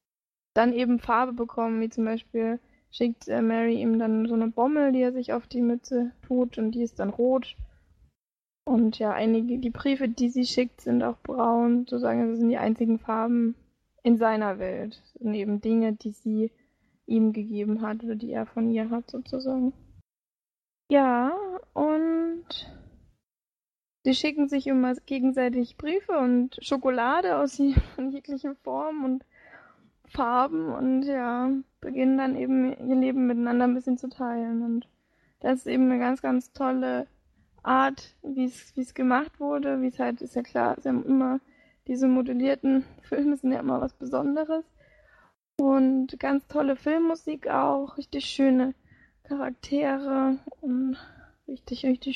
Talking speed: 150 wpm